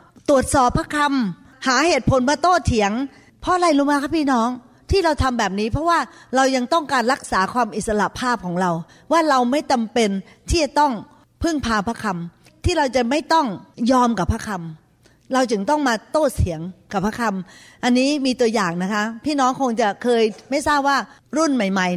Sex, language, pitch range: female, Thai, 205-275 Hz